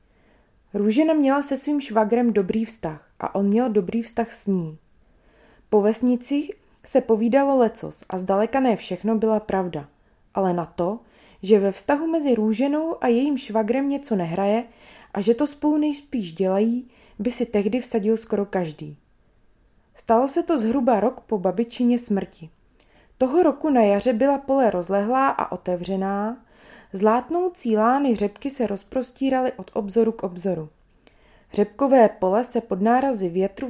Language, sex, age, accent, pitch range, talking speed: Czech, female, 20-39, native, 200-255 Hz, 145 wpm